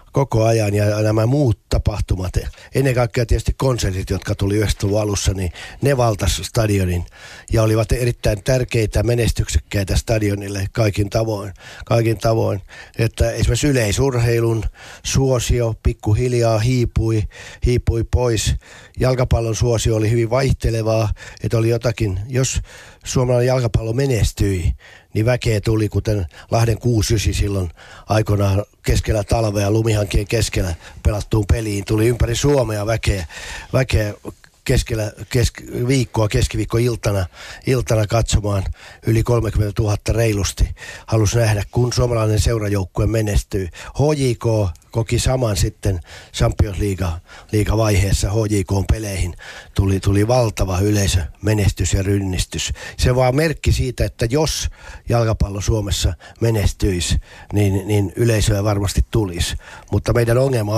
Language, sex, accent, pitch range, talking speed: Finnish, male, native, 100-115 Hz, 115 wpm